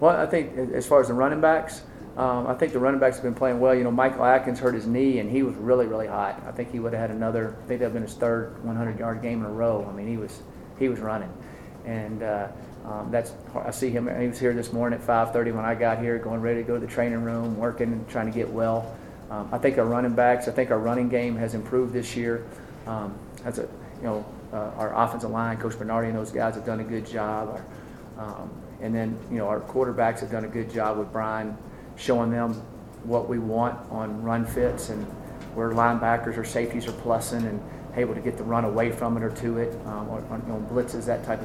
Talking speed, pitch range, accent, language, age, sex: 250 wpm, 110-125 Hz, American, English, 30-49, male